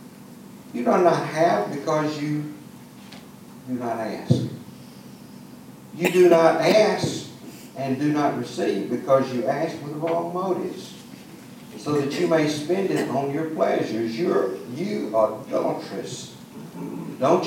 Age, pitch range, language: 60-79, 135-190 Hz, English